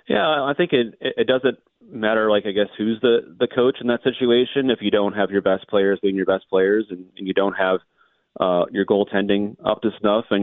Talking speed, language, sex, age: 230 wpm, English, male, 30-49